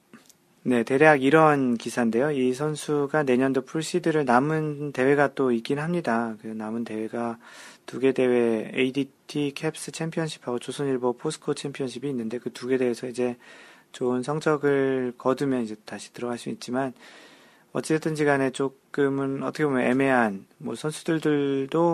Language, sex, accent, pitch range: Korean, male, native, 115-140 Hz